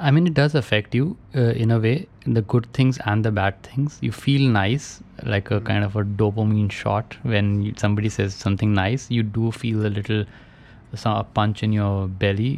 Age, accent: 20-39, Indian